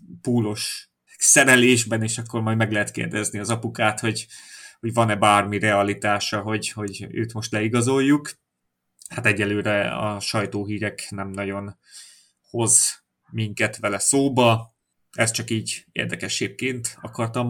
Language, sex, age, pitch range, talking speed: Hungarian, male, 30-49, 105-125 Hz, 120 wpm